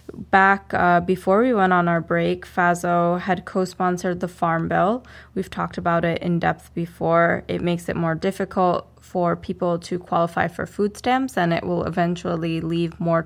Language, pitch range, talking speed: English, 170-195 Hz, 175 wpm